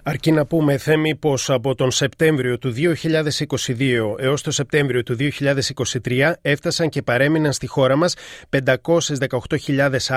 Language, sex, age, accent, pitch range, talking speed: Greek, male, 30-49, native, 135-170 Hz, 130 wpm